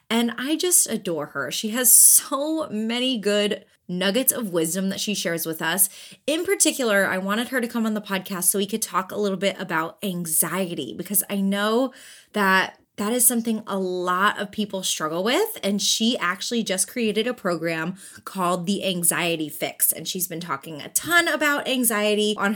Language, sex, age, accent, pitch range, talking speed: English, female, 20-39, American, 185-235 Hz, 185 wpm